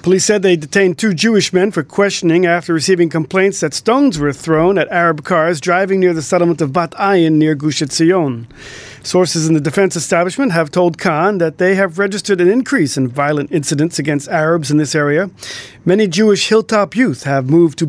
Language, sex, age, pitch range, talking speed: English, male, 40-59, 155-190 Hz, 190 wpm